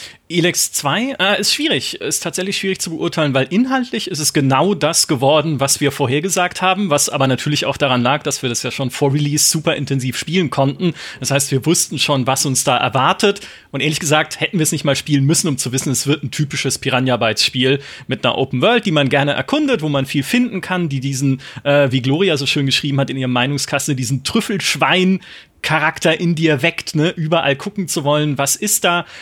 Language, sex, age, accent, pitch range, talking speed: German, male, 30-49, German, 140-175 Hz, 215 wpm